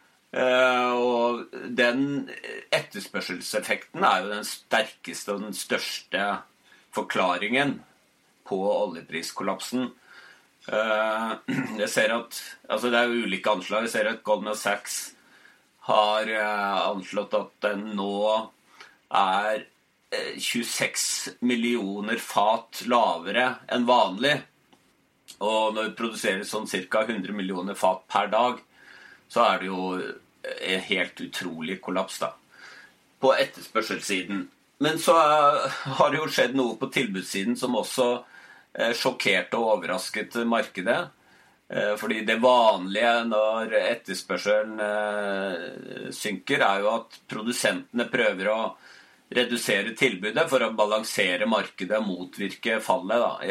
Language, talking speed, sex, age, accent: English, 120 wpm, male, 40-59, Swedish